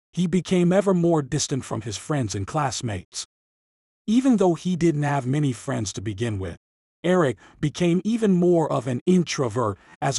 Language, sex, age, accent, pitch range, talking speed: English, male, 40-59, American, 115-165 Hz, 165 wpm